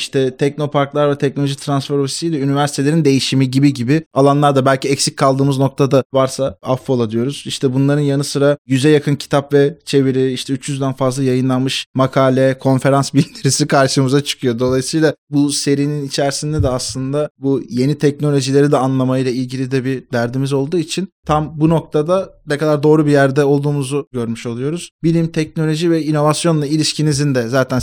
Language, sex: Turkish, male